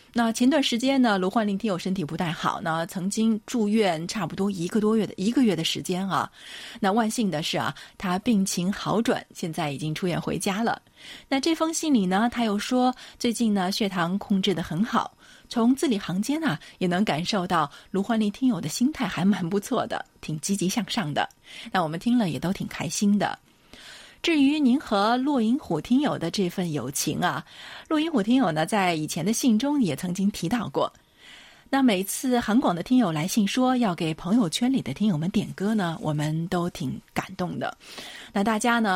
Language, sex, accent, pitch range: Chinese, female, native, 180-240 Hz